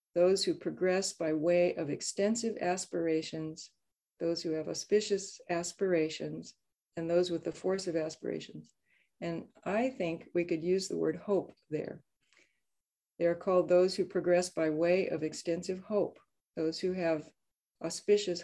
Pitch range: 165-190 Hz